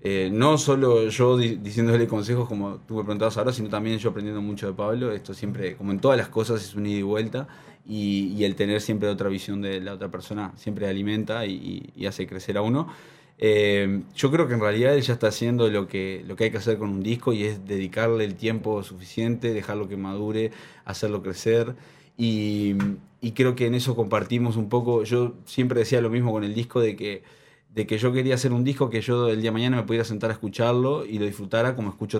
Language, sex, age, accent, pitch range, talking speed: Spanish, male, 20-39, Argentinian, 105-120 Hz, 225 wpm